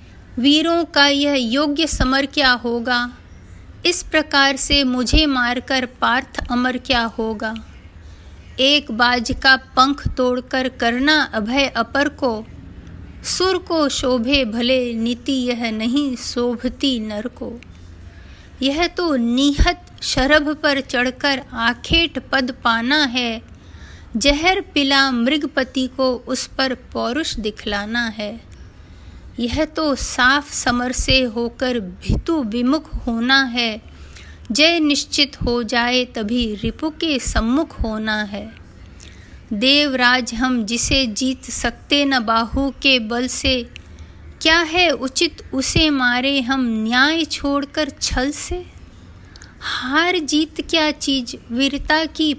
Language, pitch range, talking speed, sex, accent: Hindi, 230-285 Hz, 115 wpm, female, native